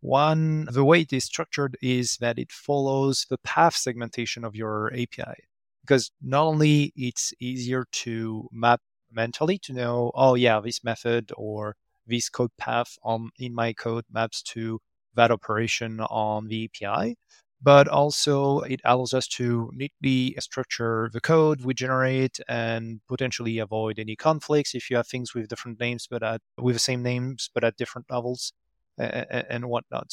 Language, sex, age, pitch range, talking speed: English, male, 30-49, 115-135 Hz, 160 wpm